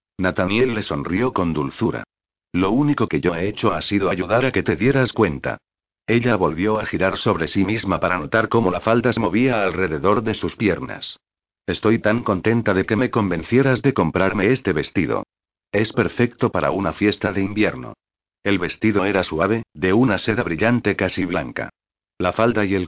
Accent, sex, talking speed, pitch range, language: Spanish, male, 180 wpm, 95-115 Hz, Spanish